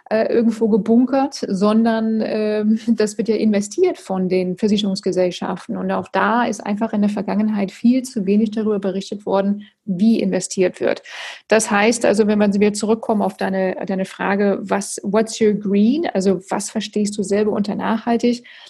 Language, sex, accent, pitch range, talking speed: German, female, German, 205-235 Hz, 160 wpm